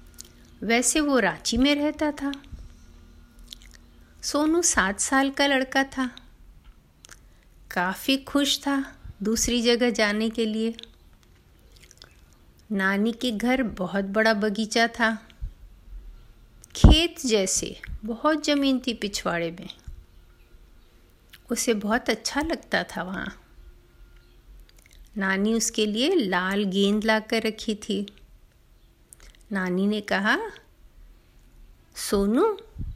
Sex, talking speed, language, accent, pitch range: female, 95 wpm, Hindi, native, 175-245 Hz